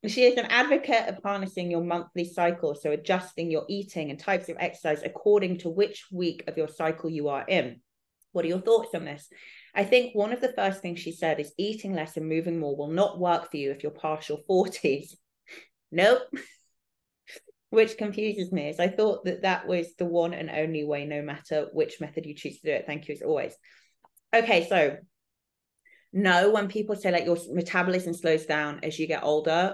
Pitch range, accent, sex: 155-195 Hz, British, female